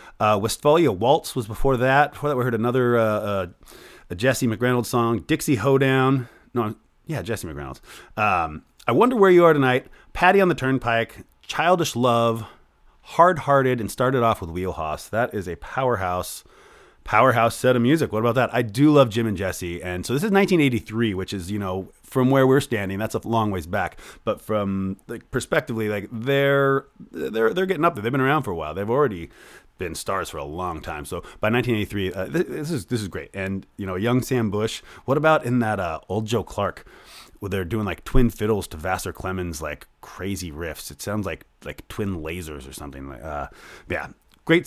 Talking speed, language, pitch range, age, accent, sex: 205 wpm, English, 100-135 Hz, 30-49, American, male